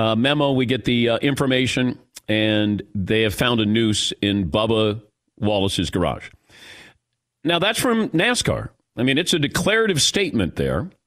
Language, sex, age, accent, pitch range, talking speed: English, male, 50-69, American, 120-165 Hz, 150 wpm